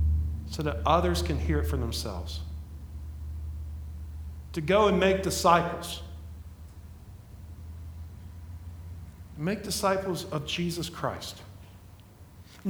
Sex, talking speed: male, 85 wpm